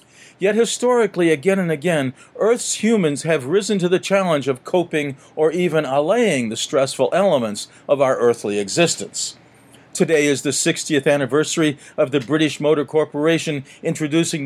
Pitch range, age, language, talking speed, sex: 140-180 Hz, 50-69, English, 145 wpm, male